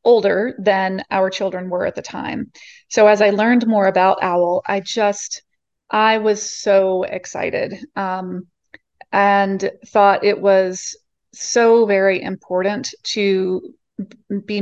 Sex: female